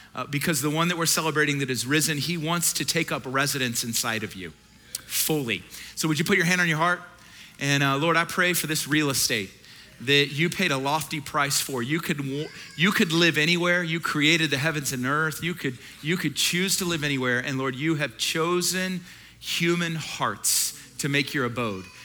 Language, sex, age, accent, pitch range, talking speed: English, male, 40-59, American, 125-155 Hz, 205 wpm